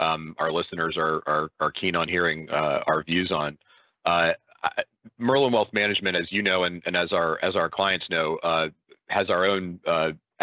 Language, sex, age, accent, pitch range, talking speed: English, male, 40-59, American, 85-105 Hz, 190 wpm